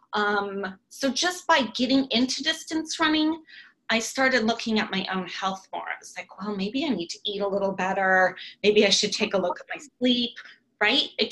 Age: 20-39